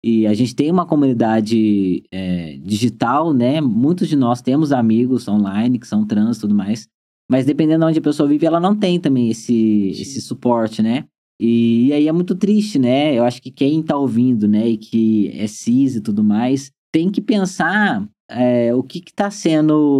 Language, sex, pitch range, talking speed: Portuguese, male, 120-160 Hz, 195 wpm